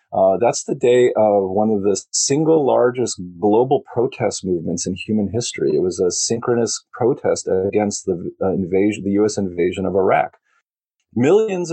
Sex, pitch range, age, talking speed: male, 100-140 Hz, 40-59, 155 wpm